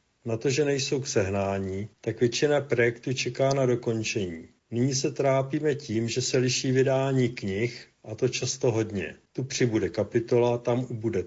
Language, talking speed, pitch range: Slovak, 160 wpm, 115-130 Hz